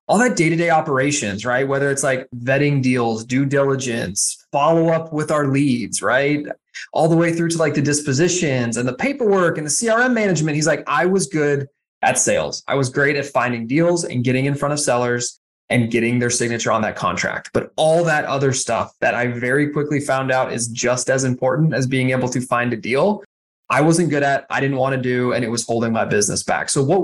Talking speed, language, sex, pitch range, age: 220 wpm, English, male, 125-150 Hz, 20-39